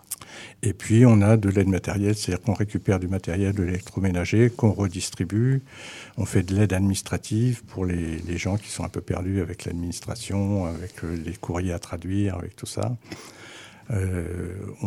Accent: French